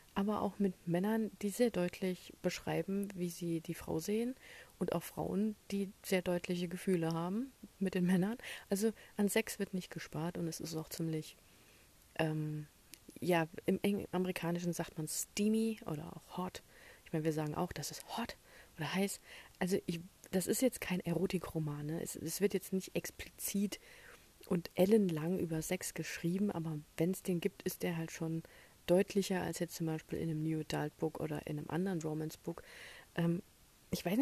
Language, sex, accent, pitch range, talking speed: German, female, German, 165-200 Hz, 175 wpm